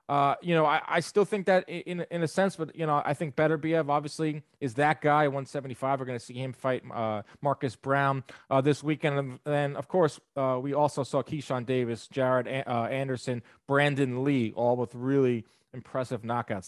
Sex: male